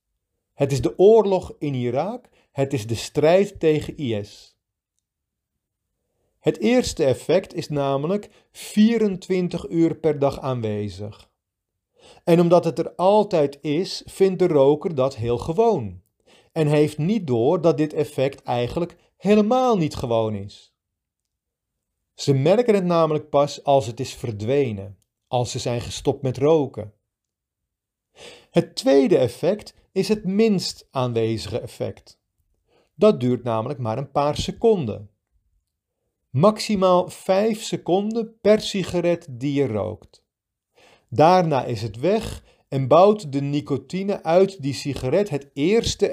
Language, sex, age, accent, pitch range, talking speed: Dutch, male, 40-59, Dutch, 115-180 Hz, 125 wpm